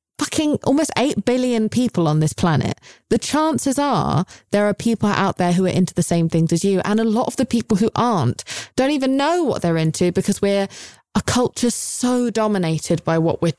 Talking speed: 210 wpm